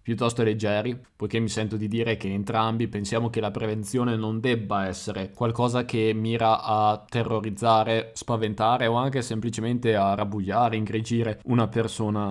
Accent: native